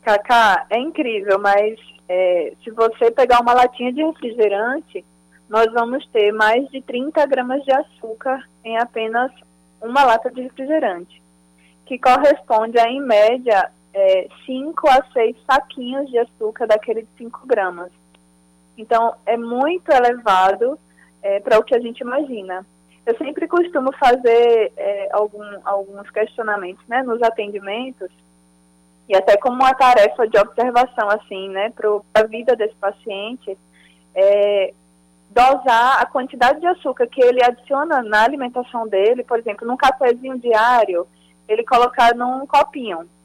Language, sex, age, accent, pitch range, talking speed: Portuguese, female, 20-39, Brazilian, 205-265 Hz, 130 wpm